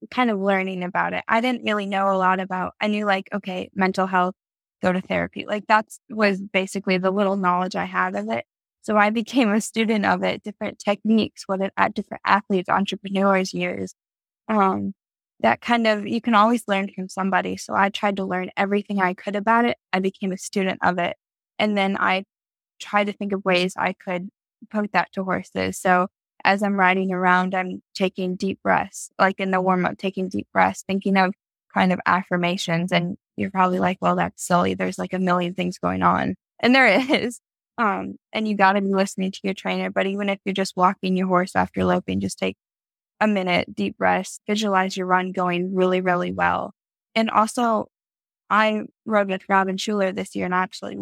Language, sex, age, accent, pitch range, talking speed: English, female, 10-29, American, 180-205 Hz, 200 wpm